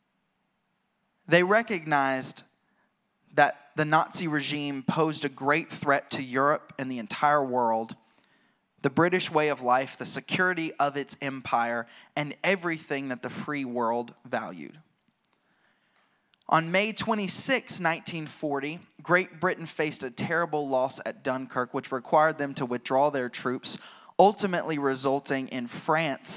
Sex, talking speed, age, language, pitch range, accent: male, 125 wpm, 20-39, English, 135-170 Hz, American